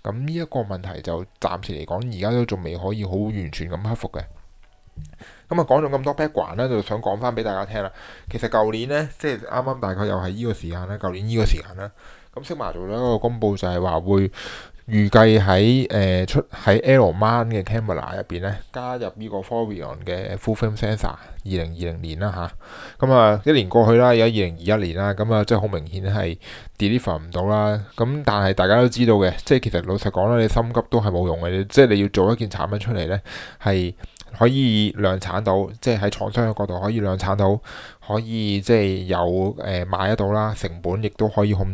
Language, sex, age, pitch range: Chinese, male, 20-39, 95-115 Hz